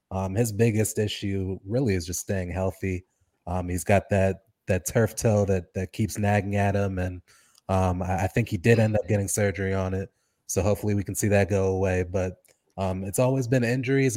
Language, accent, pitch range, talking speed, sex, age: English, American, 95-110 Hz, 210 wpm, male, 20-39